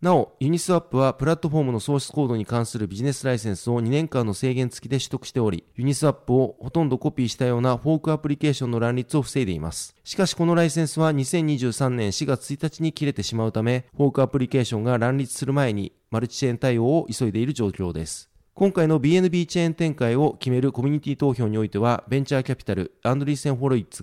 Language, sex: Japanese, male